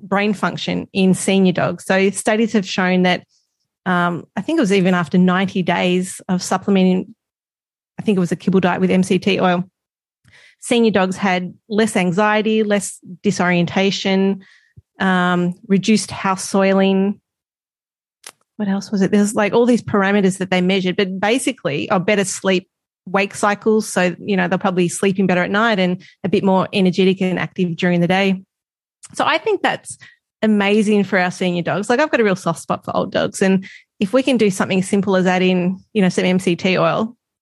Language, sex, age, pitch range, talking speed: English, female, 30-49, 180-210 Hz, 185 wpm